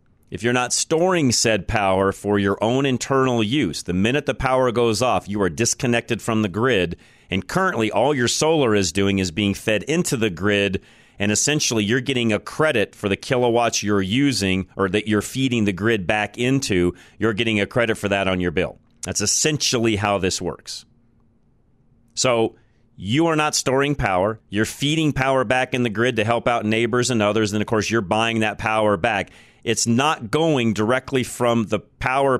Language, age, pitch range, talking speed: English, 40-59, 100-125 Hz, 190 wpm